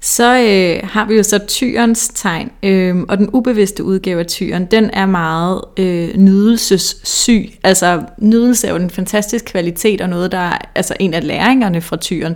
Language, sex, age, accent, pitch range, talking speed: Danish, female, 30-49, native, 190-225 Hz, 180 wpm